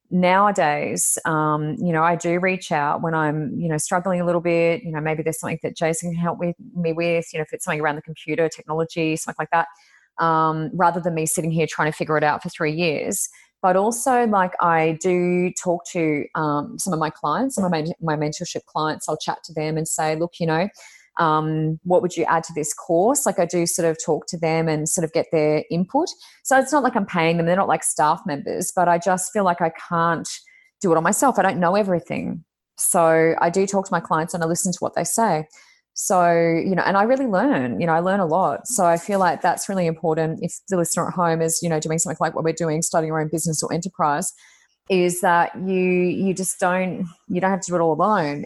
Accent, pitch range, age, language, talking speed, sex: Australian, 160-185 Hz, 20-39, English, 245 wpm, female